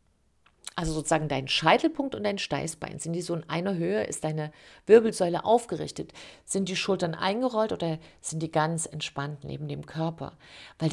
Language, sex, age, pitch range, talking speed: German, female, 50-69, 160-210 Hz, 165 wpm